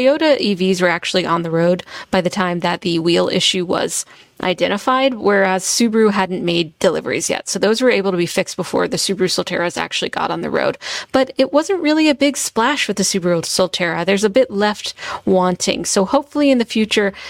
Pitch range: 185-240 Hz